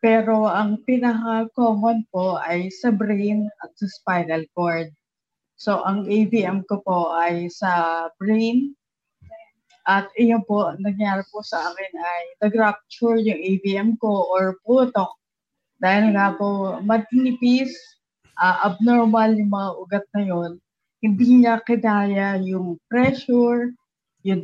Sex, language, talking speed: female, Filipino, 125 wpm